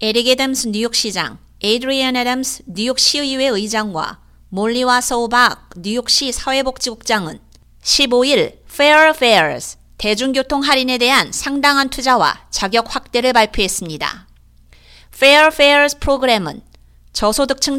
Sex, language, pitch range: female, Korean, 215-270 Hz